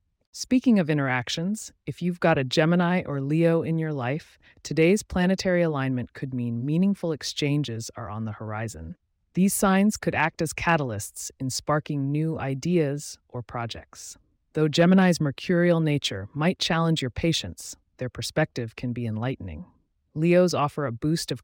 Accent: American